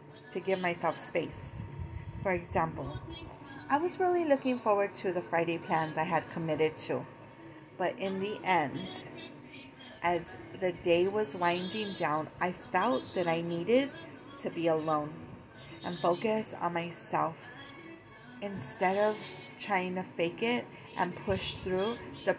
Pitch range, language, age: 160-220 Hz, English, 30-49